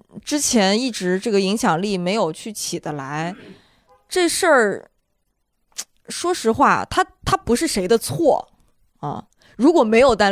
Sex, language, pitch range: female, Chinese, 175-220 Hz